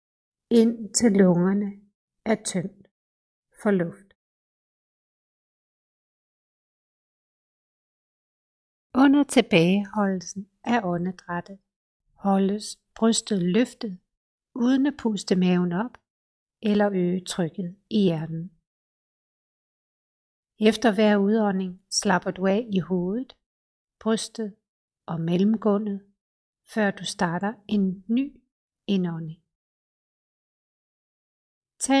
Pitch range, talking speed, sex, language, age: 185-230 Hz, 80 wpm, female, Danish, 60-79